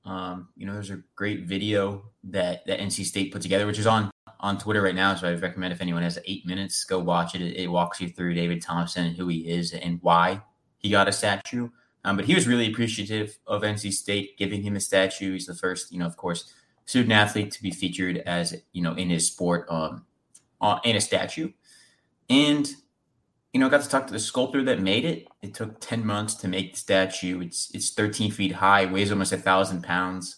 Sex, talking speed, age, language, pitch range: male, 225 wpm, 20-39, English, 90-105 Hz